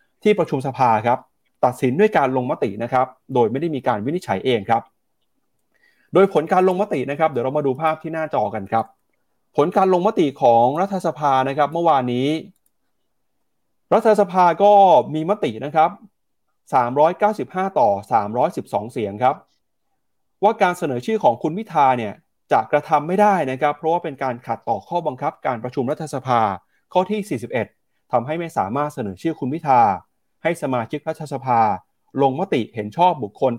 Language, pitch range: Thai, 120-165 Hz